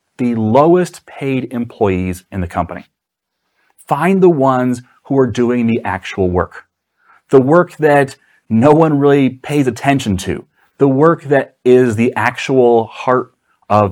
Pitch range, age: 110-150 Hz, 30-49